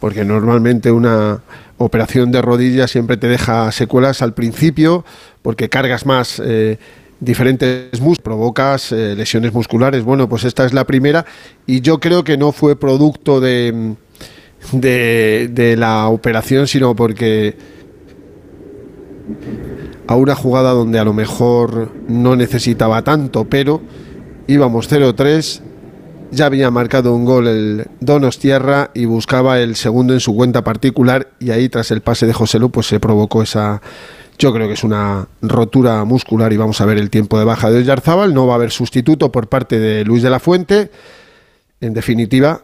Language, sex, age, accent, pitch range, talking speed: Spanish, male, 40-59, Spanish, 115-135 Hz, 160 wpm